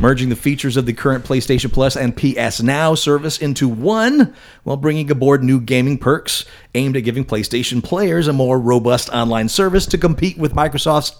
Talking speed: 180 wpm